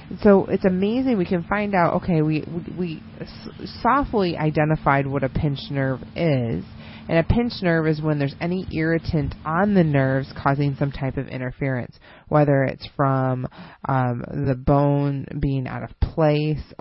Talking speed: 155 wpm